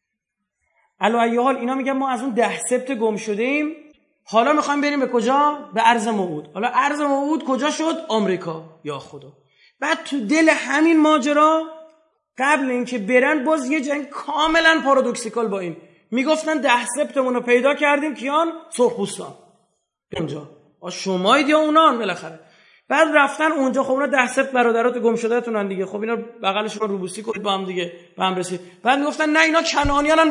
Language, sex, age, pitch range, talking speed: Persian, male, 30-49, 205-290 Hz, 165 wpm